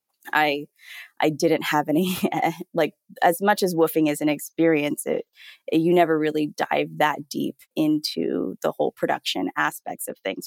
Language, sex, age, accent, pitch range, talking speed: English, female, 20-39, American, 145-175 Hz, 160 wpm